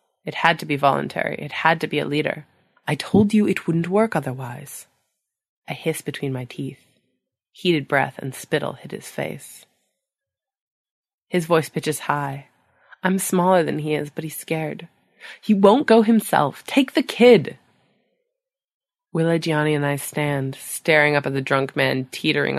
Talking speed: 160 wpm